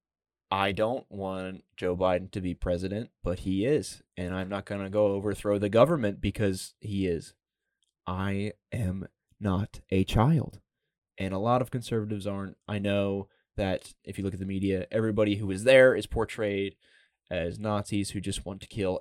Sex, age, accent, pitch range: male, 20-39, American, 95-110 Hz